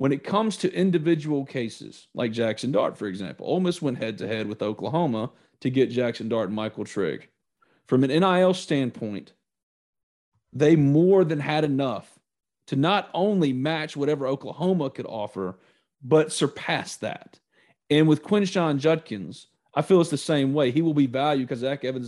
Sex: male